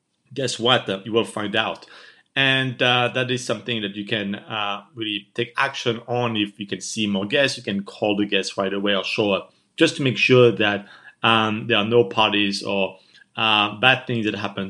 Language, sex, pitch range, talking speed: English, male, 115-150 Hz, 210 wpm